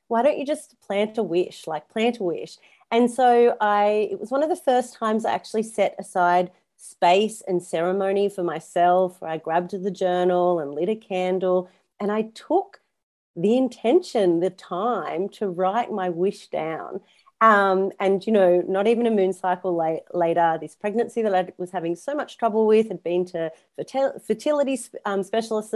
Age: 30-49